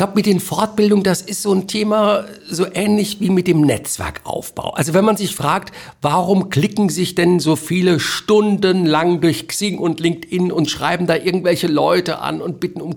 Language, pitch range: German, 155-190 Hz